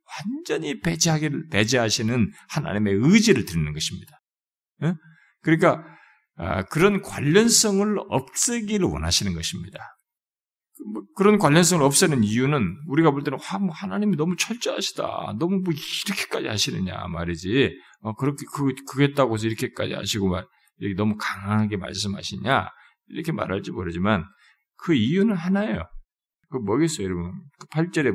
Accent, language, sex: native, Korean, male